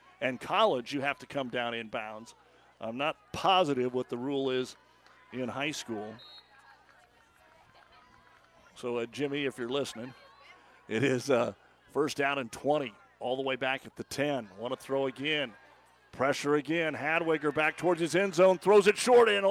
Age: 50-69